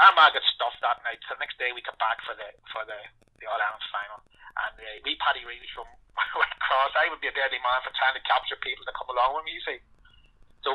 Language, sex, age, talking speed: English, male, 30-49, 260 wpm